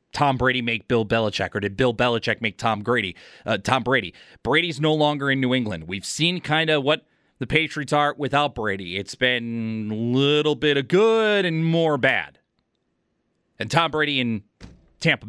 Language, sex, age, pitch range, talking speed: English, male, 30-49, 110-145 Hz, 180 wpm